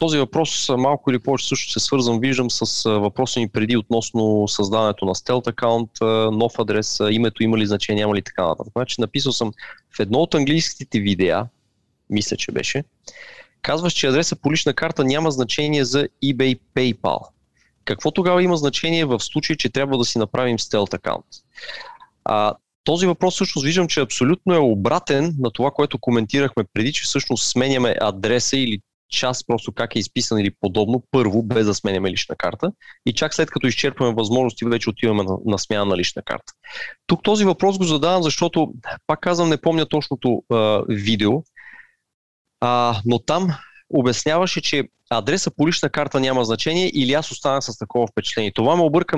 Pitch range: 115-155 Hz